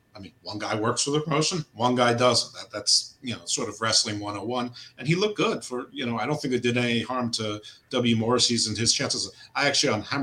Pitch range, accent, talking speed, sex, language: 110-130 Hz, American, 240 wpm, male, English